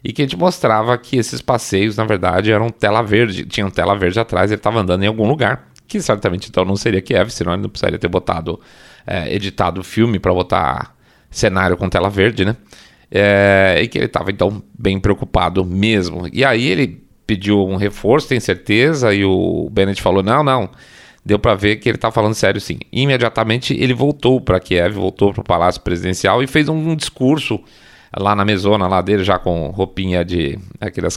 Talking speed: 200 wpm